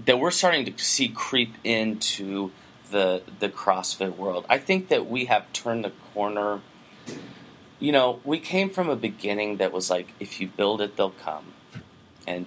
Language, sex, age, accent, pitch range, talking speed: English, male, 30-49, American, 95-115 Hz, 175 wpm